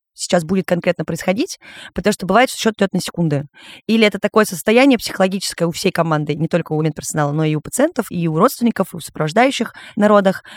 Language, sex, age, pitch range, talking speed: Russian, female, 20-39, 185-235 Hz, 185 wpm